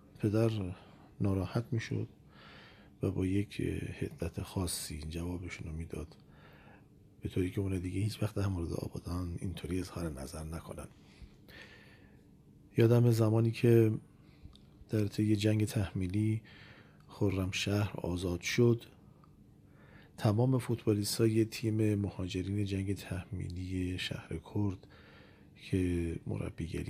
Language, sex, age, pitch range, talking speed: Persian, male, 40-59, 90-110 Hz, 105 wpm